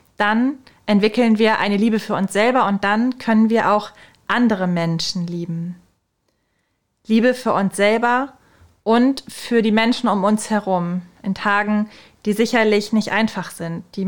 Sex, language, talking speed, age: female, German, 150 wpm, 20-39